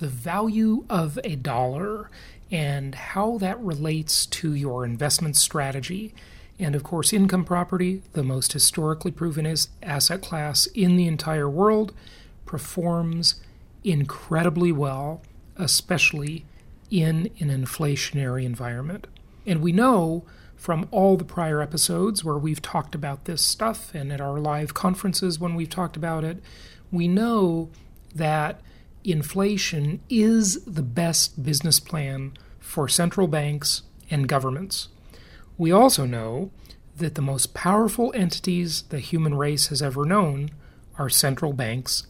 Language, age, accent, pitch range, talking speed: English, 40-59, American, 145-190 Hz, 130 wpm